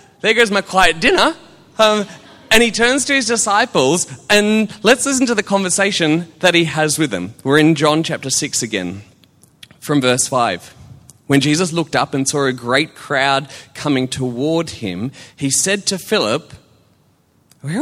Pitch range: 125-165 Hz